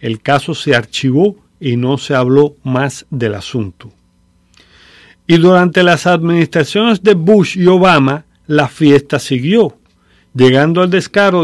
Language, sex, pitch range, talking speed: English, male, 130-180 Hz, 130 wpm